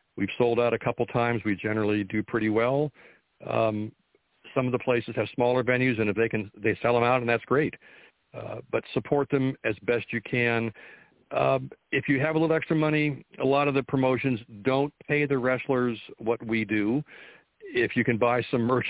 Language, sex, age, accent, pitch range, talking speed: English, male, 50-69, American, 110-125 Hz, 205 wpm